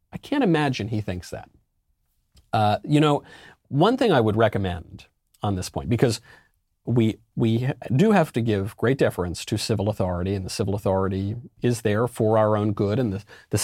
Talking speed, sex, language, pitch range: 185 wpm, male, English, 100-125 Hz